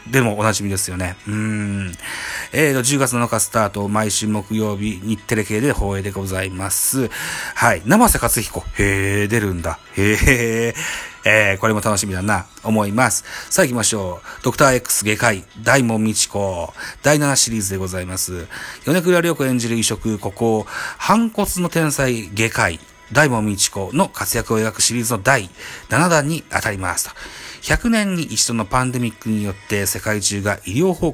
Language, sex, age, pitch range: Japanese, male, 30-49, 100-135 Hz